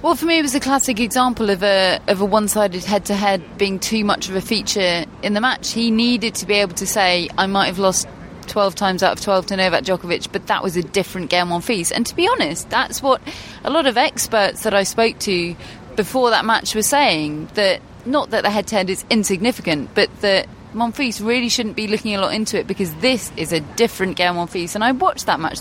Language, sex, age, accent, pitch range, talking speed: English, female, 30-49, British, 180-230 Hz, 230 wpm